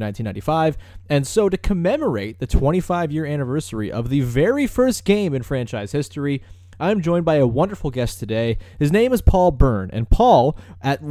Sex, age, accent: male, 20-39, American